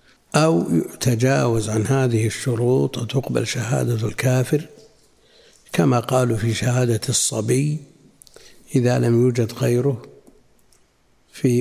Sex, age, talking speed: male, 60-79, 95 wpm